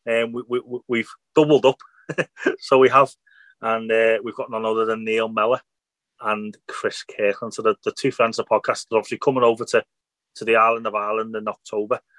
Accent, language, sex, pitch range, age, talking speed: British, English, male, 115-155 Hz, 30-49, 205 wpm